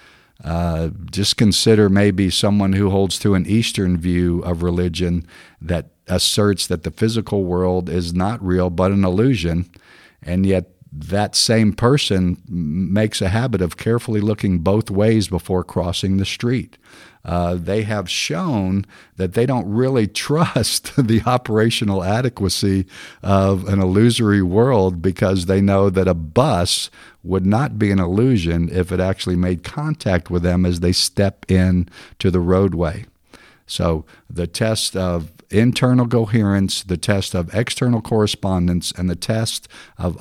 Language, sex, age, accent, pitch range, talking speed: English, male, 50-69, American, 90-105 Hz, 145 wpm